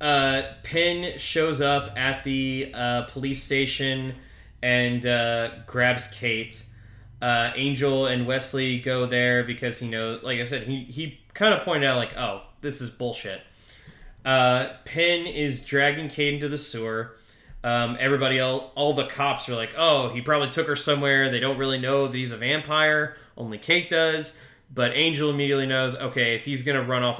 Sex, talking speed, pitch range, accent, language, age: male, 175 wpm, 115-135 Hz, American, English, 20-39